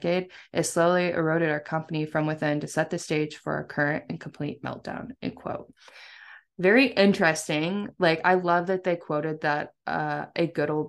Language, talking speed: English, 180 wpm